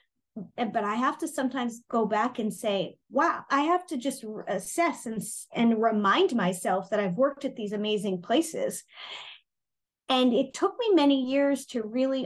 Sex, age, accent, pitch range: female, 30-49, American, 205-260 Hz